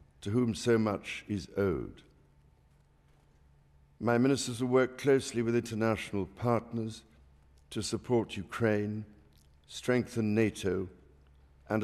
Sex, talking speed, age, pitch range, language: male, 100 wpm, 60-79, 85-115 Hz, English